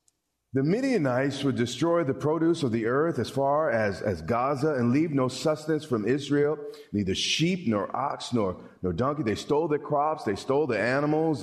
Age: 40-59